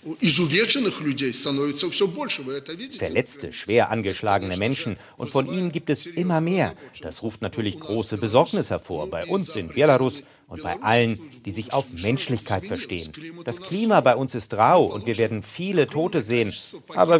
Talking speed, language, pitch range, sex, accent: 145 wpm, German, 105-150 Hz, male, German